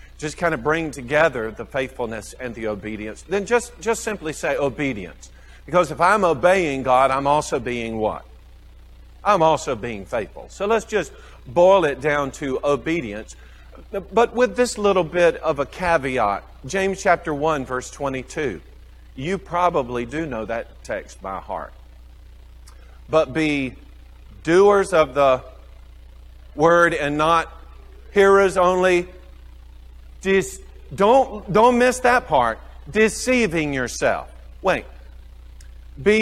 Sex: male